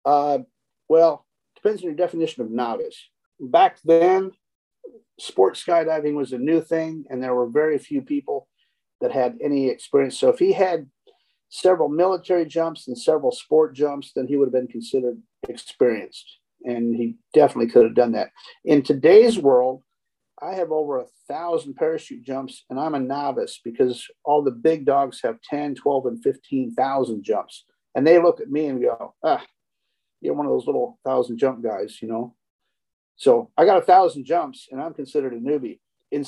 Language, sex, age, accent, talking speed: English, male, 50-69, American, 180 wpm